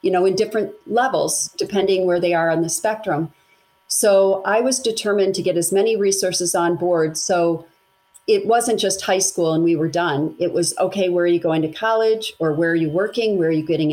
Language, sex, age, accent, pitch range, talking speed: English, female, 40-59, American, 170-200 Hz, 220 wpm